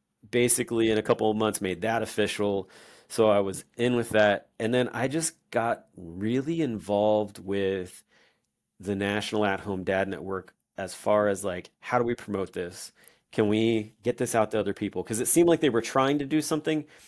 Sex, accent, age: male, American, 30-49